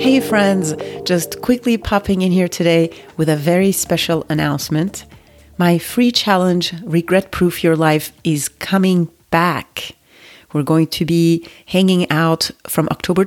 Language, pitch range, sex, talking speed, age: English, 155-185 Hz, female, 140 wpm, 30-49